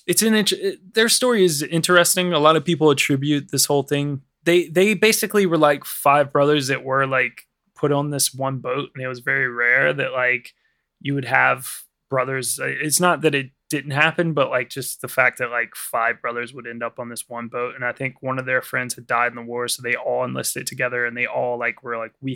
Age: 20-39